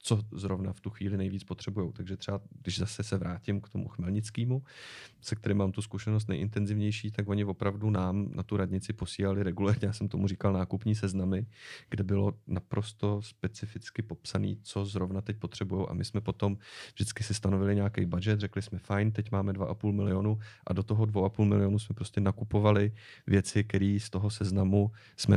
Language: Czech